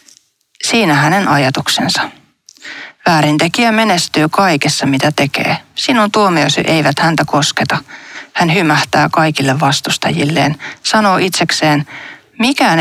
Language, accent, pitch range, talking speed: Finnish, native, 150-200 Hz, 95 wpm